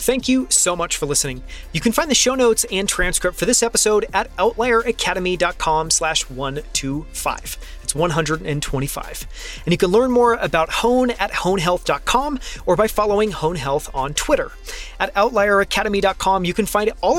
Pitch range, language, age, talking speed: 165-220 Hz, English, 30-49, 155 wpm